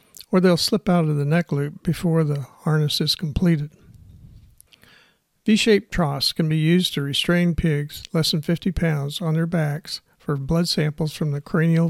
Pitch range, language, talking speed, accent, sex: 145-175 Hz, English, 170 wpm, American, male